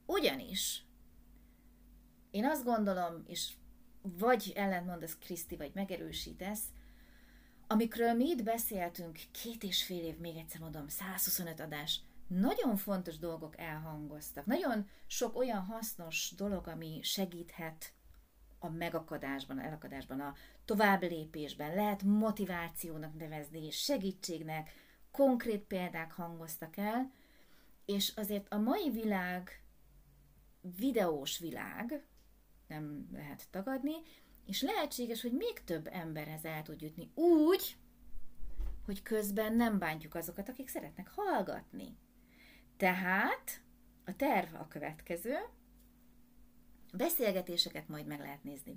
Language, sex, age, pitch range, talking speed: Hungarian, female, 30-49, 155-220 Hz, 105 wpm